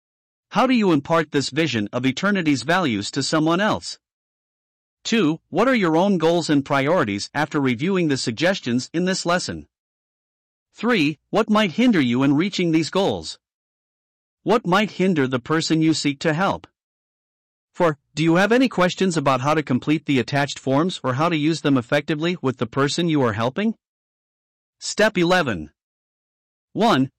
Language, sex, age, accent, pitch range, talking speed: English, male, 50-69, American, 135-185 Hz, 160 wpm